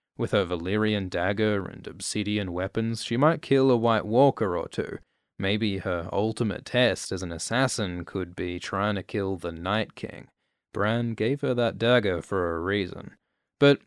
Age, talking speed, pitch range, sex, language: 20-39, 170 wpm, 95-125 Hz, male, English